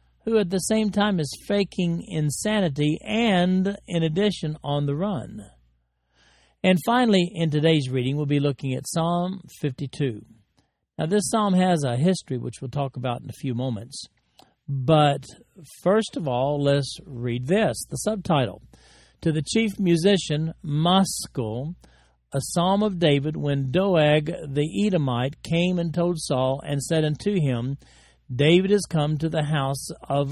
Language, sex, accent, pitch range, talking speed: English, male, American, 130-175 Hz, 150 wpm